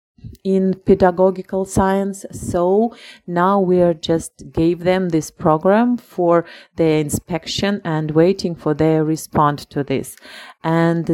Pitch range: 160-195 Hz